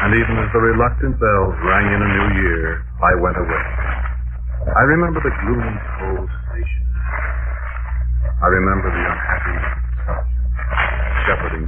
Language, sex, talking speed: English, male, 130 wpm